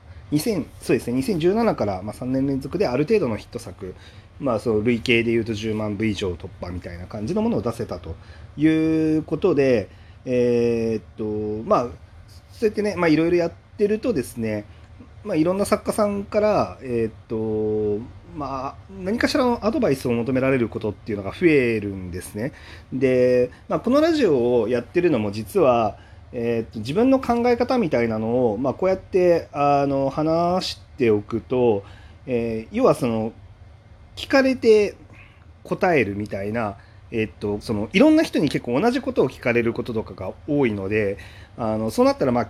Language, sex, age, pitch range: Japanese, male, 40-59, 100-155 Hz